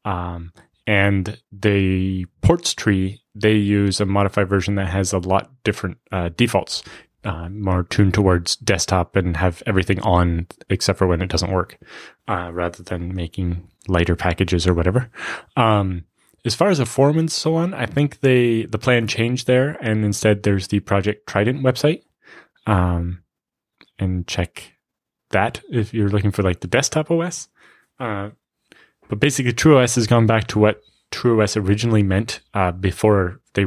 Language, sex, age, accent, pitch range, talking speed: English, male, 20-39, American, 95-110 Hz, 160 wpm